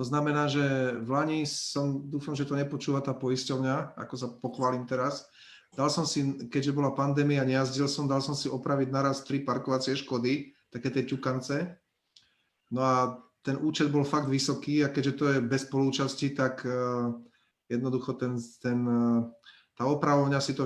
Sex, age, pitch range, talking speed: male, 30-49, 125-145 Hz, 165 wpm